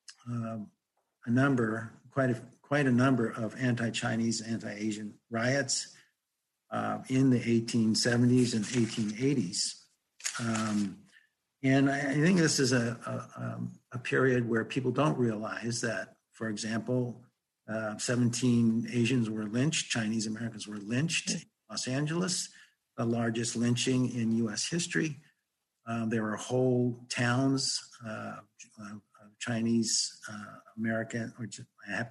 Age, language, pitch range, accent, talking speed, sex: 50-69, English, 110-130 Hz, American, 125 wpm, male